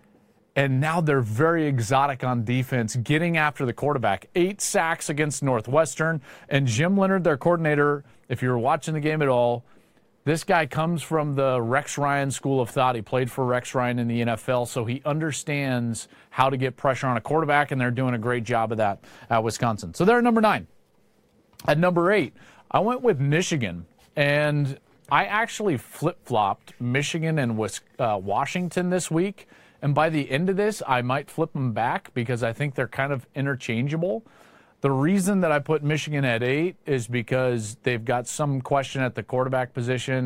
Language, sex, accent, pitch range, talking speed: English, male, American, 125-155 Hz, 180 wpm